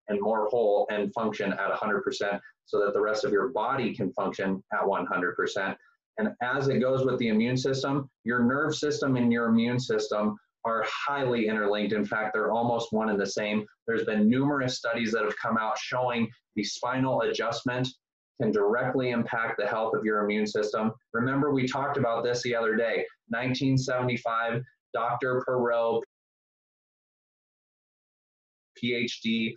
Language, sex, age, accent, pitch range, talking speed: English, male, 20-39, American, 115-145 Hz, 155 wpm